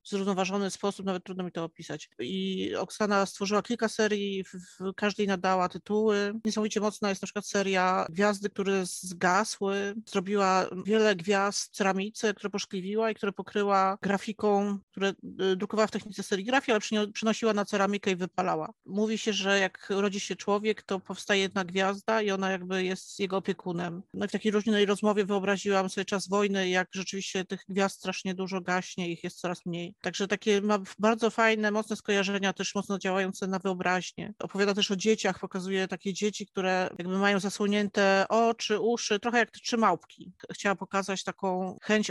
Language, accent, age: Polish, native, 40-59